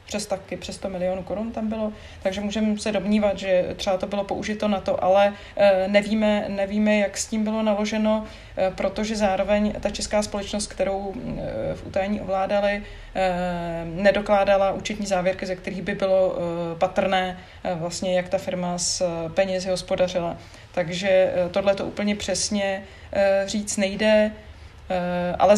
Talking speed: 160 wpm